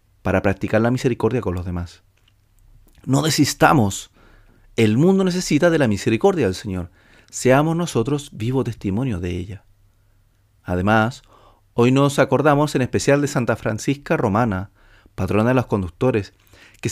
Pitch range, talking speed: 100-125 Hz, 135 wpm